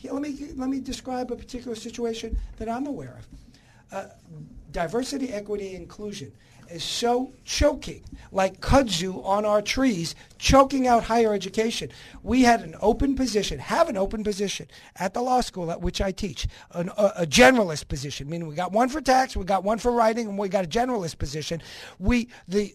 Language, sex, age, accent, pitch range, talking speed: English, male, 50-69, American, 170-255 Hz, 185 wpm